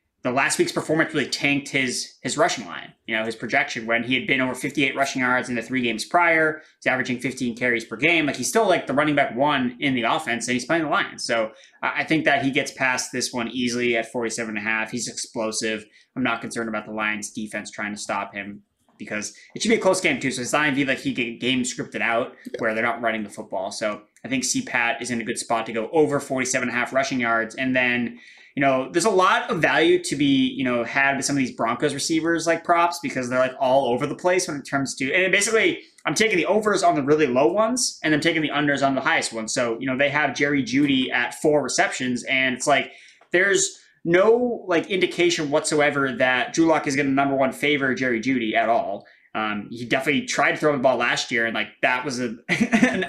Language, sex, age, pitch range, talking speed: English, male, 20-39, 120-160 Hz, 245 wpm